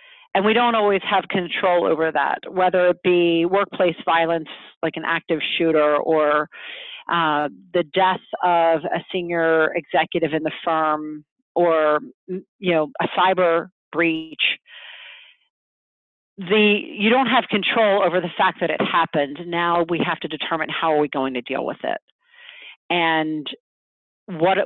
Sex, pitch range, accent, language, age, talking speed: female, 155-195 Hz, American, English, 40-59, 145 wpm